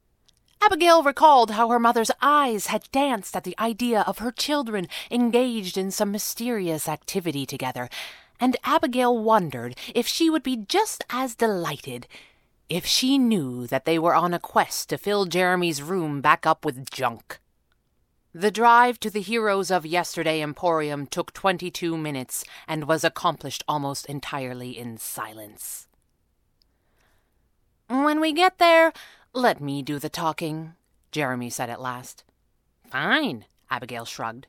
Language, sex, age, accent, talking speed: English, female, 30-49, American, 140 wpm